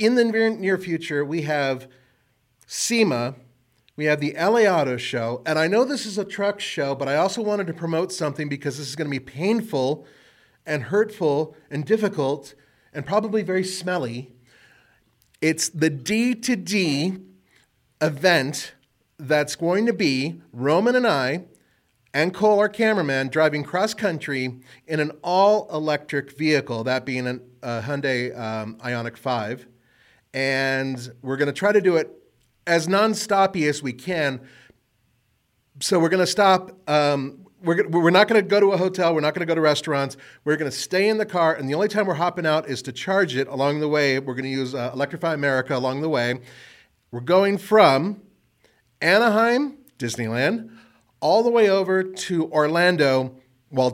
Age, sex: 30-49, male